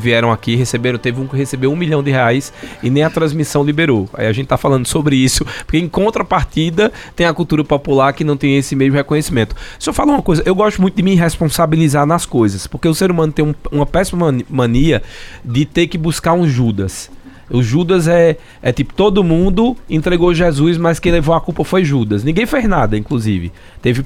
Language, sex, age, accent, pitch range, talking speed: Portuguese, male, 20-39, Brazilian, 120-165 Hz, 210 wpm